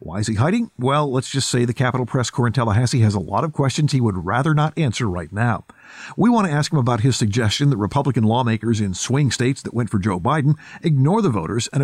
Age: 50-69